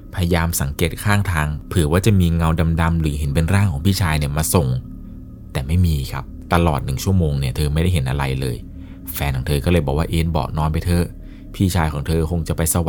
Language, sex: Thai, male